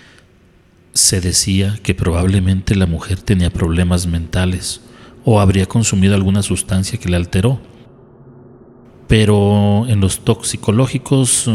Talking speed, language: 110 wpm, Spanish